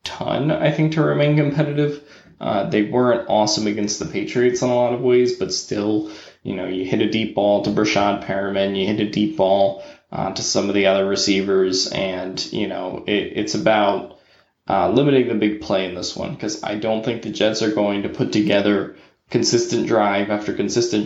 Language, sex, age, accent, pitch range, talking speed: English, male, 10-29, American, 100-125 Hz, 200 wpm